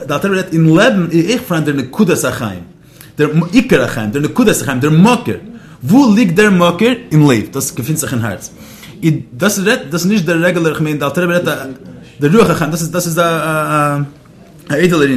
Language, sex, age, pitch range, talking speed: English, male, 30-49, 145-185 Hz, 125 wpm